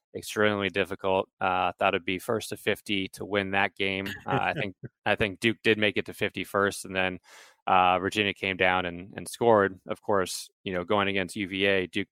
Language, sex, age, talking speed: English, male, 20-39, 205 wpm